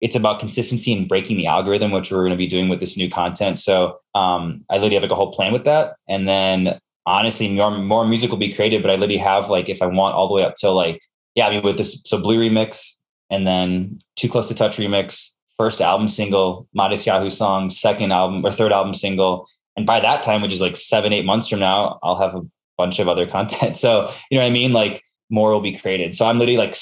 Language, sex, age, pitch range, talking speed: English, male, 20-39, 95-115 Hz, 250 wpm